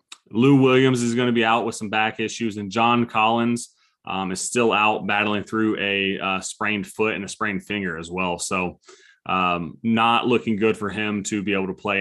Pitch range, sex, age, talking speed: 100-115 Hz, male, 30-49, 205 wpm